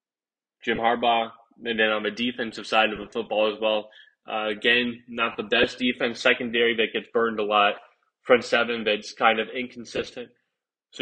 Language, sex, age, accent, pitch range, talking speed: English, male, 20-39, American, 110-125 Hz, 175 wpm